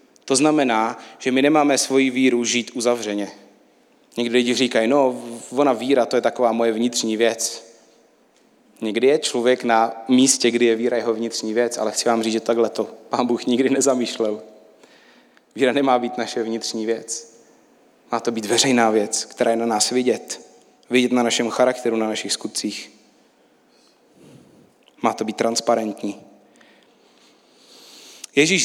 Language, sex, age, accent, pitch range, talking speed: Czech, male, 30-49, native, 115-145 Hz, 150 wpm